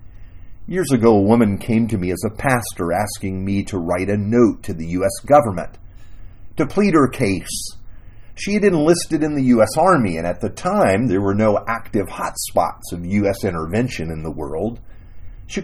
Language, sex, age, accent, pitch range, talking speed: English, male, 40-59, American, 95-140 Hz, 180 wpm